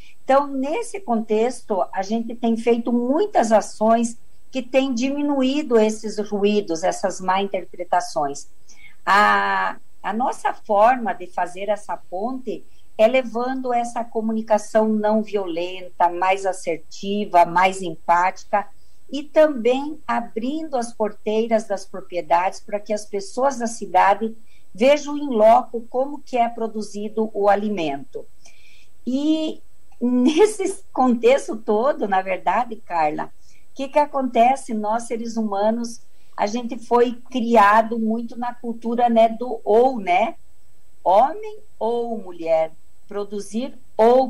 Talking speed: 120 wpm